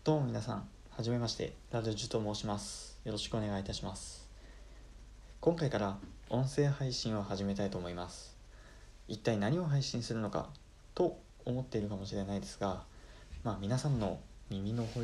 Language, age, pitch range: Japanese, 20-39, 95-115 Hz